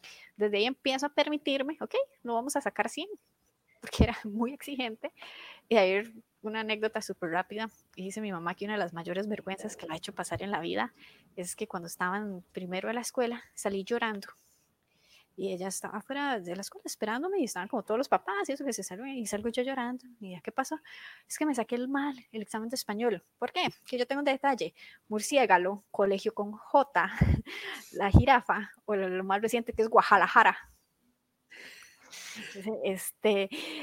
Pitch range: 195-260 Hz